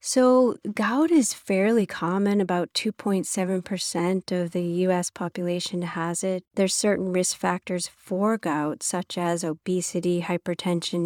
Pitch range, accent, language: 170-195 Hz, American, English